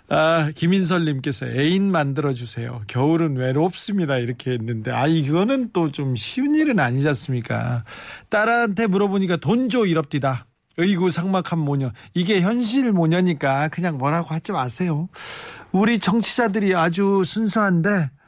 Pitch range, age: 135-190 Hz, 40-59